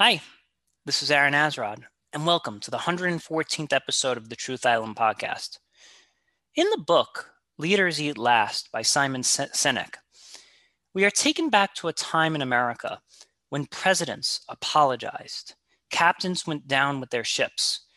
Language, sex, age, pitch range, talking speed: English, male, 30-49, 125-170 Hz, 145 wpm